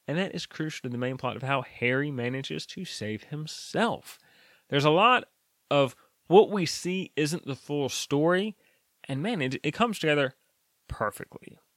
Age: 30-49